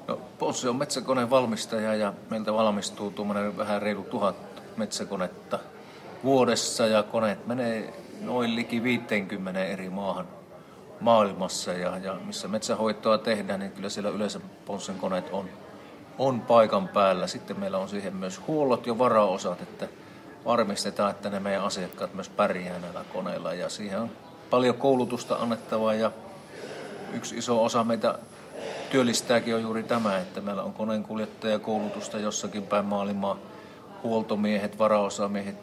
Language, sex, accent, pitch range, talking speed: Finnish, male, native, 100-115 Hz, 135 wpm